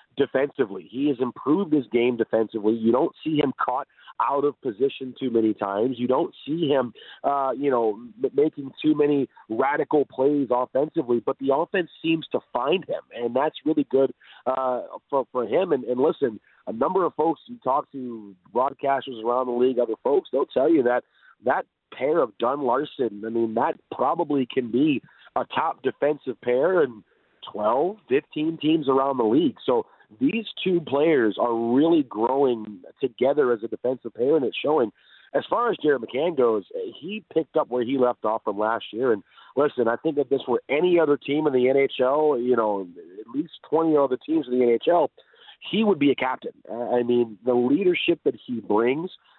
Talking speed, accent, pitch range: 185 wpm, American, 125-180 Hz